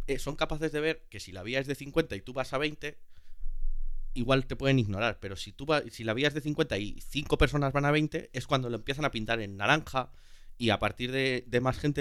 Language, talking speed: Spanish, 245 wpm